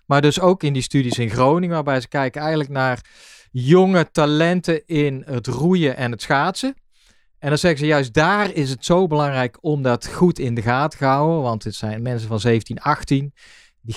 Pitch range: 130-170 Hz